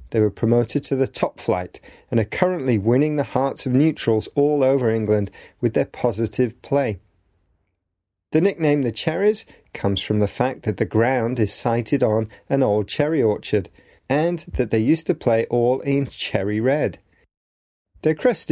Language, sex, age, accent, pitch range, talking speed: English, male, 30-49, British, 105-135 Hz, 170 wpm